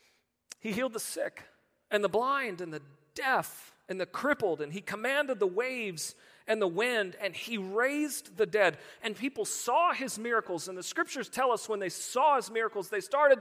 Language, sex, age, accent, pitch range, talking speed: English, male, 40-59, American, 180-275 Hz, 190 wpm